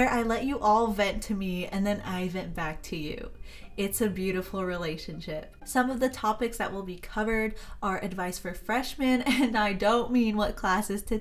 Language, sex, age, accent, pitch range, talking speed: English, female, 20-39, American, 180-235 Hz, 205 wpm